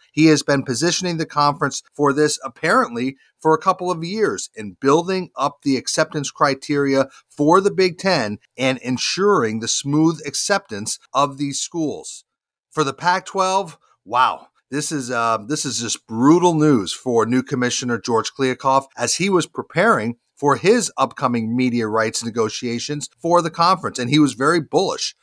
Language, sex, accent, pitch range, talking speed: English, male, American, 130-170 Hz, 160 wpm